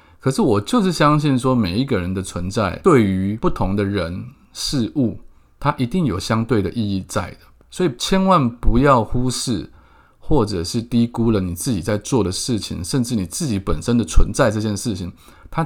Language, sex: Chinese, male